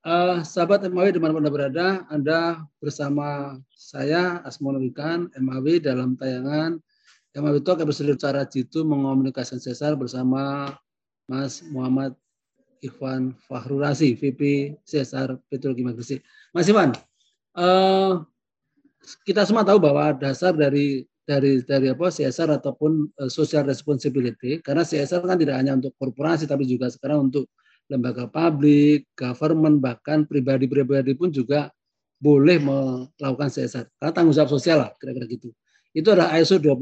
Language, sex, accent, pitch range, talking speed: Indonesian, male, native, 135-170 Hz, 125 wpm